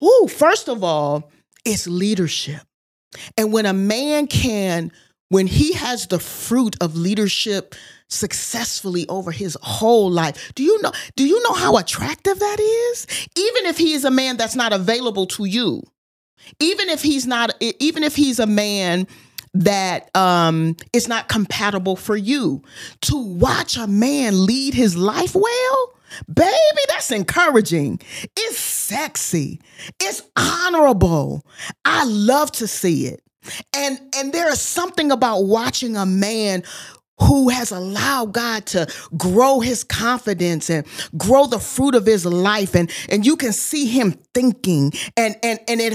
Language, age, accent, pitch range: English, 40-59, American, 190-280 Hz